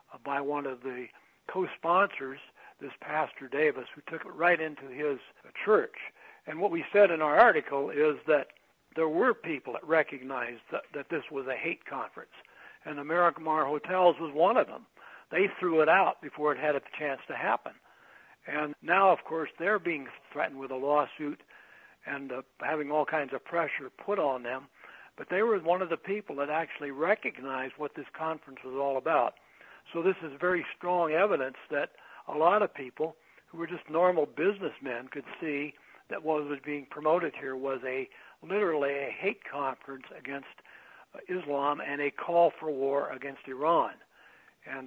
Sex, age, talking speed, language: male, 60-79, 175 wpm, English